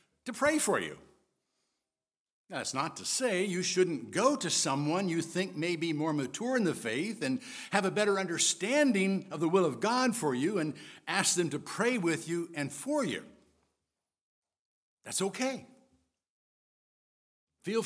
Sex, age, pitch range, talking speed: male, 60-79, 170-240 Hz, 160 wpm